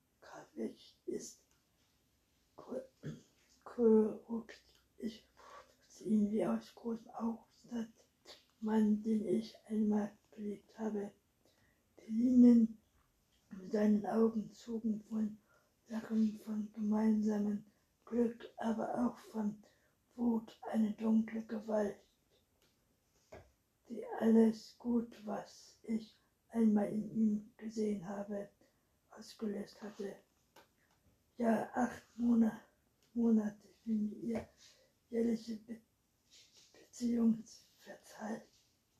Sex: female